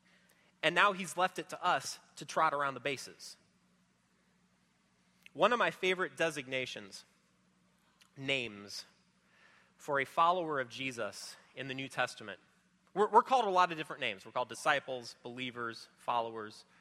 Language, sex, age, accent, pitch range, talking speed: English, male, 30-49, American, 130-195 Hz, 145 wpm